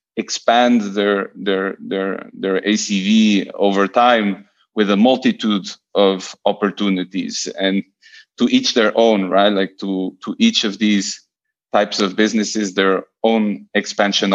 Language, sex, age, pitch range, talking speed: English, male, 30-49, 95-110 Hz, 130 wpm